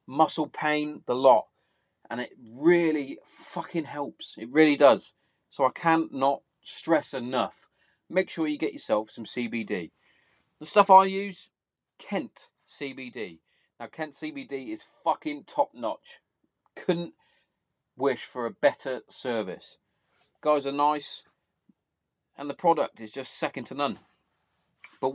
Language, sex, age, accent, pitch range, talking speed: English, male, 30-49, British, 140-175 Hz, 135 wpm